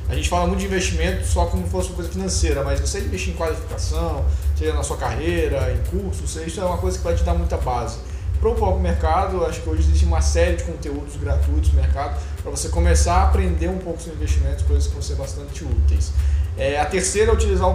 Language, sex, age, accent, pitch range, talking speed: Portuguese, male, 20-39, Brazilian, 75-90 Hz, 230 wpm